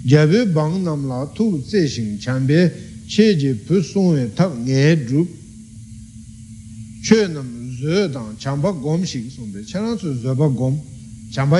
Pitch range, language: 115-165 Hz, Italian